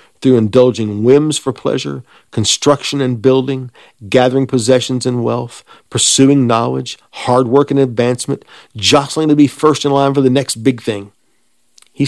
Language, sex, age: English, male, 50-69